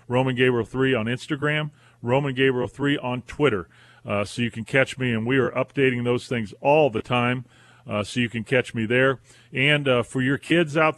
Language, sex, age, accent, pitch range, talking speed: English, male, 40-59, American, 115-135 Hz, 210 wpm